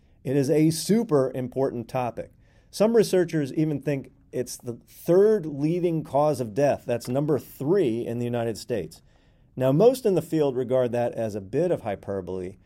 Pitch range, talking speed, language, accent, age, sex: 110-145 Hz, 170 wpm, English, American, 40-59, male